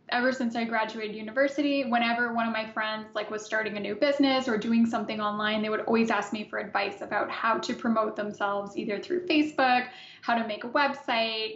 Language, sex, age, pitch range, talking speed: English, female, 10-29, 215-245 Hz, 210 wpm